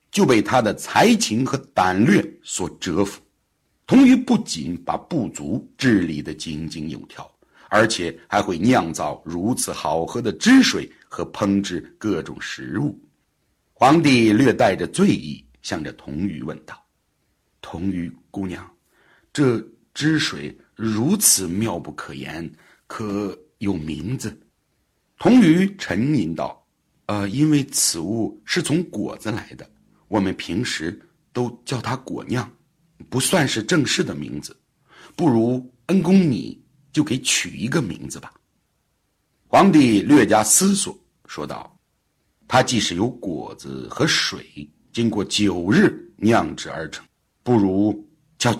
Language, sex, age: Chinese, male, 60-79